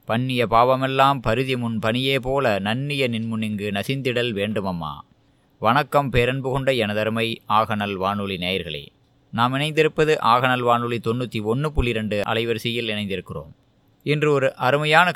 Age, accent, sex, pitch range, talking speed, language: 20-39, native, male, 110-140 Hz, 125 wpm, Tamil